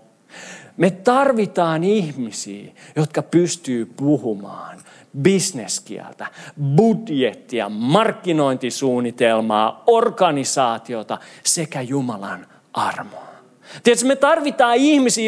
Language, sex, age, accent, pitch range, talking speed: Finnish, male, 40-59, native, 140-220 Hz, 65 wpm